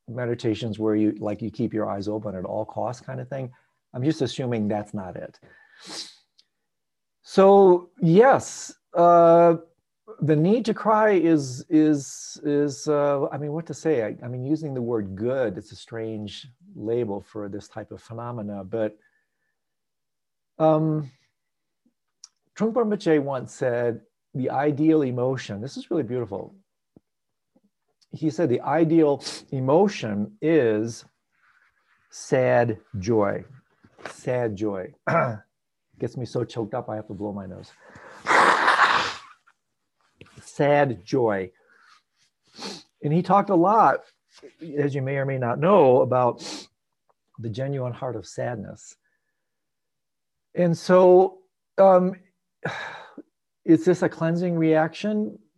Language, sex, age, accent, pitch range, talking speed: English, male, 40-59, American, 115-165 Hz, 125 wpm